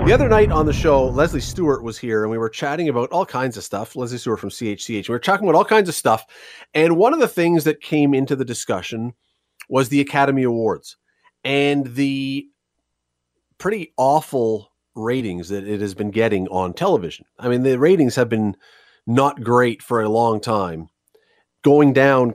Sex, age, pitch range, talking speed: male, 40-59, 110-160 Hz, 190 wpm